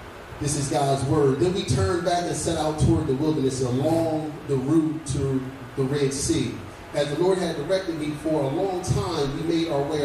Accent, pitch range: American, 135-170 Hz